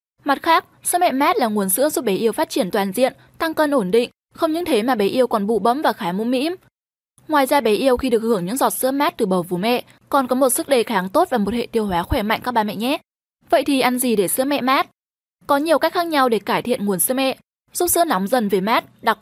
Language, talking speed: Vietnamese, 285 wpm